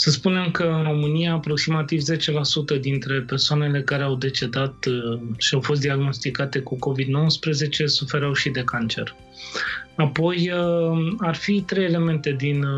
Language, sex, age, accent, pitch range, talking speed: Romanian, male, 20-39, native, 130-150 Hz, 130 wpm